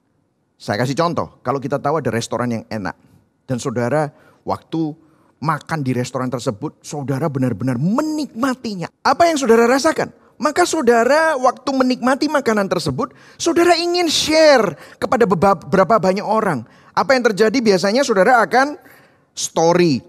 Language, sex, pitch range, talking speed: Indonesian, male, 180-280 Hz, 130 wpm